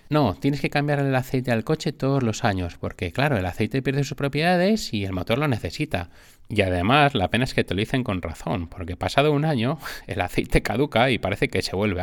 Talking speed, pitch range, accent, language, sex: 230 wpm, 95-135 Hz, Spanish, Spanish, male